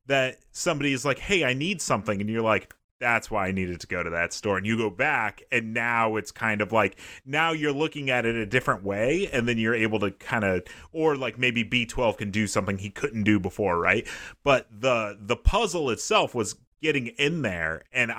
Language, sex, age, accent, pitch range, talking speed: English, male, 30-49, American, 110-160 Hz, 220 wpm